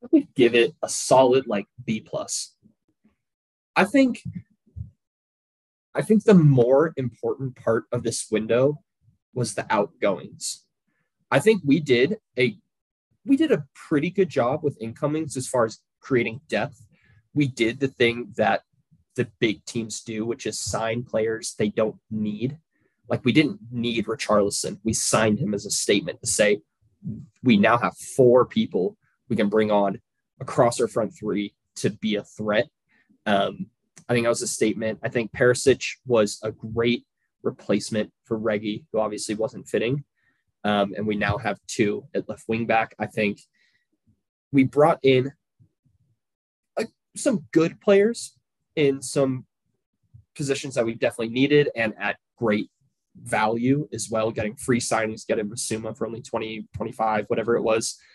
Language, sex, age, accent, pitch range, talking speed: English, male, 20-39, American, 110-140 Hz, 155 wpm